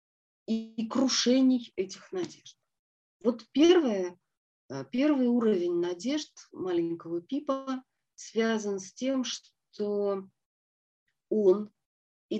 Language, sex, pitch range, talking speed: Russian, female, 170-240 Hz, 75 wpm